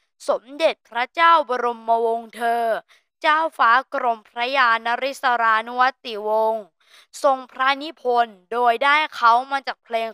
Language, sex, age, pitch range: Thai, female, 20-39, 220-275 Hz